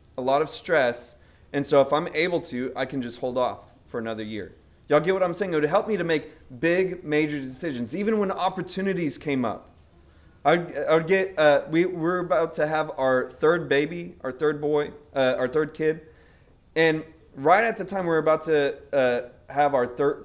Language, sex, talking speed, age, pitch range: English, male, 215 wpm, 30-49, 120-155 Hz